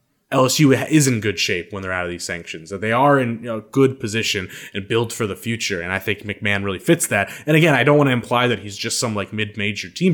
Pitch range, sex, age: 105-135 Hz, male, 20-39